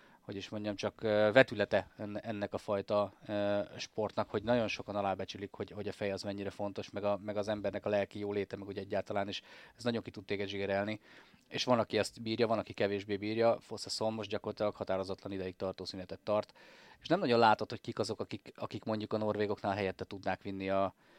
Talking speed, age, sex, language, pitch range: 205 wpm, 30-49, male, Hungarian, 100-115 Hz